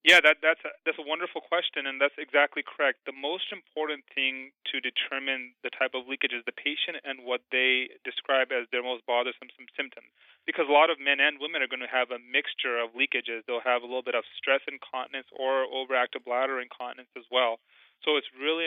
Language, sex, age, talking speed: English, male, 30-49, 205 wpm